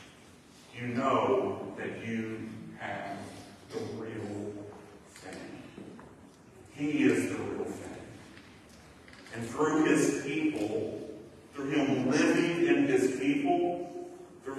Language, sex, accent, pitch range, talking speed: English, female, American, 115-145 Hz, 100 wpm